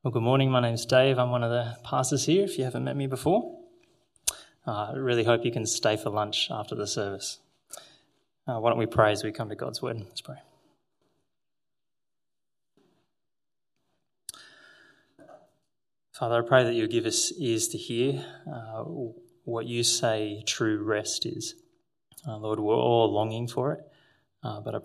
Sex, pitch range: male, 110-140 Hz